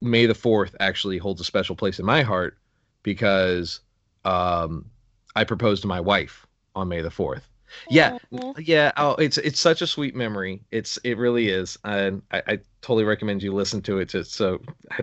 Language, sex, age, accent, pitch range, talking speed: English, male, 30-49, American, 95-120 Hz, 190 wpm